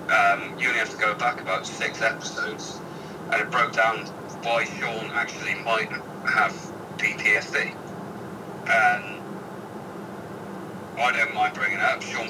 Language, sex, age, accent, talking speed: English, male, 30-49, British, 135 wpm